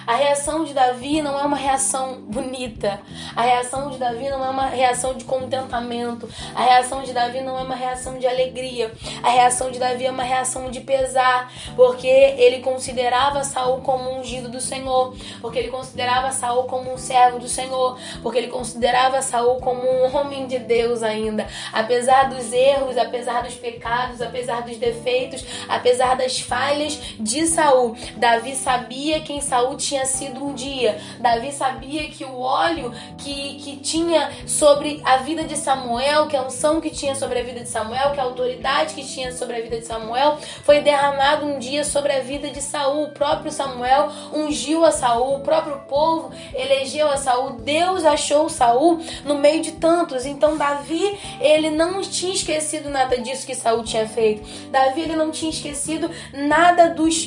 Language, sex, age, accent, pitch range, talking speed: Portuguese, female, 10-29, Brazilian, 250-295 Hz, 175 wpm